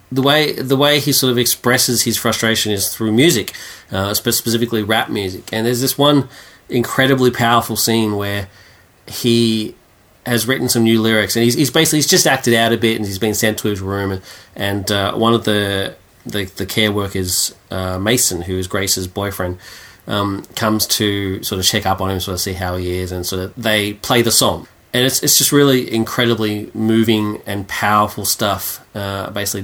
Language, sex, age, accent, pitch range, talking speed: English, male, 30-49, Australian, 95-120 Hz, 200 wpm